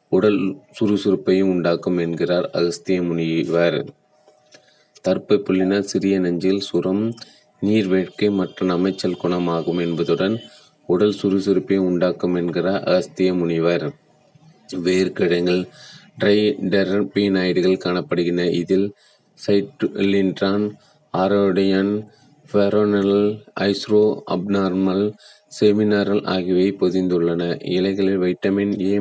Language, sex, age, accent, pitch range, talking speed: Tamil, male, 30-49, native, 90-100 Hz, 60 wpm